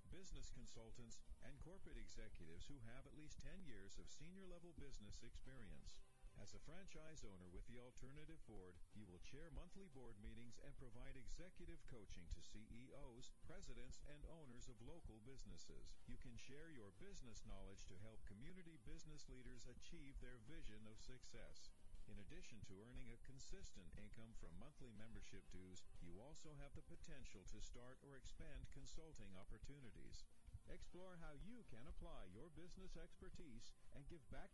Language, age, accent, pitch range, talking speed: English, 50-69, American, 100-145 Hz, 160 wpm